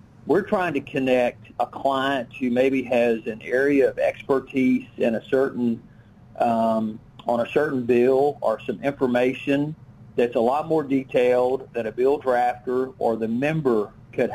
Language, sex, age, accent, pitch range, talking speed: English, male, 50-69, American, 120-140 Hz, 155 wpm